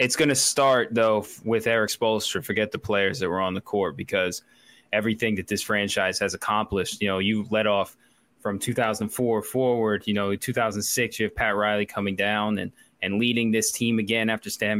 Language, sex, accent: English, male, American